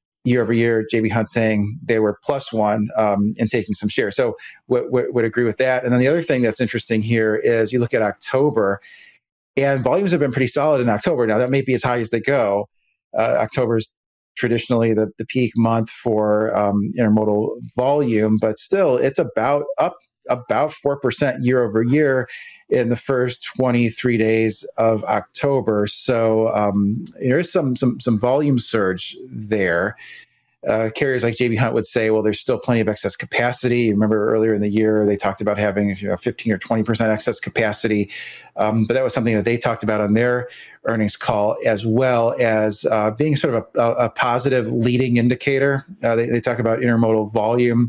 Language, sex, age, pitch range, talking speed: English, male, 30-49, 110-125 Hz, 190 wpm